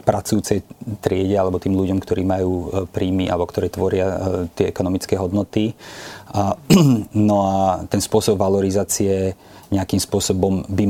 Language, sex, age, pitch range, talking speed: Slovak, male, 30-49, 95-105 Hz, 120 wpm